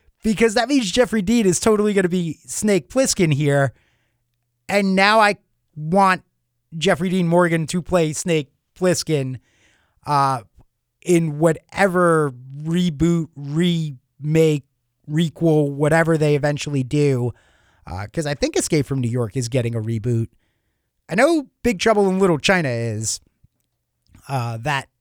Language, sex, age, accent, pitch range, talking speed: English, male, 30-49, American, 130-185 Hz, 135 wpm